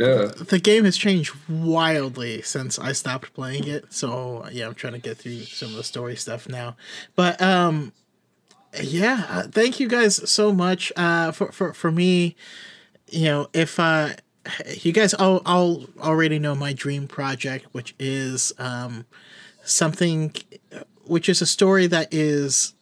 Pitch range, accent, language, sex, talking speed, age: 130-170 Hz, American, English, male, 160 wpm, 30-49